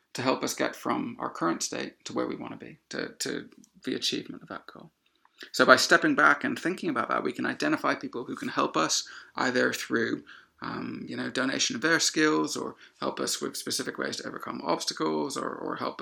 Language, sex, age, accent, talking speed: English, male, 30-49, British, 210 wpm